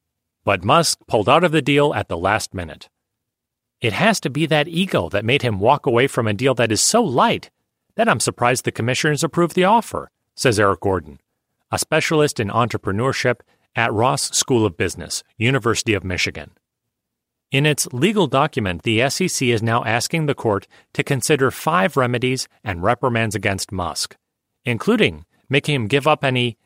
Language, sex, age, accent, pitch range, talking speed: English, male, 40-59, American, 110-150 Hz, 175 wpm